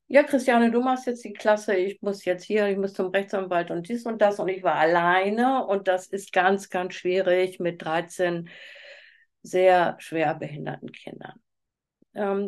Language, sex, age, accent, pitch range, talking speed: German, female, 50-69, German, 185-235 Hz, 175 wpm